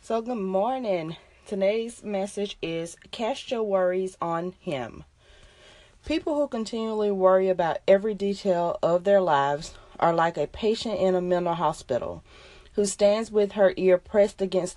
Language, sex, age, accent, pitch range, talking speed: English, female, 30-49, American, 155-200 Hz, 145 wpm